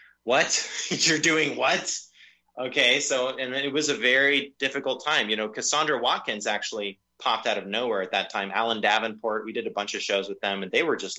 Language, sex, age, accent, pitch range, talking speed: English, male, 20-39, American, 100-135 Hz, 210 wpm